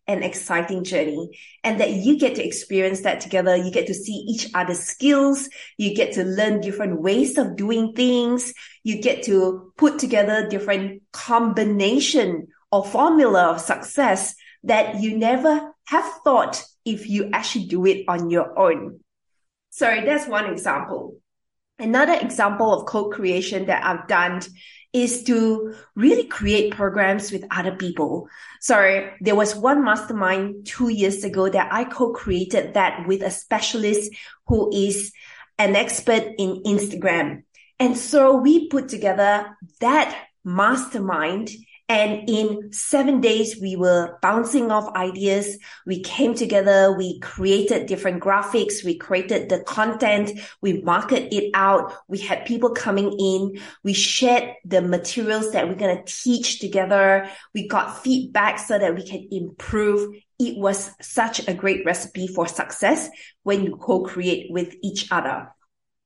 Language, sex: English, female